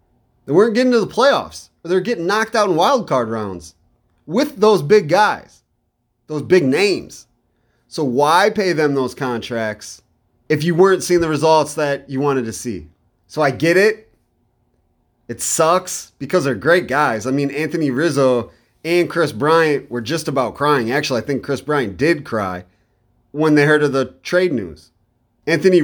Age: 30-49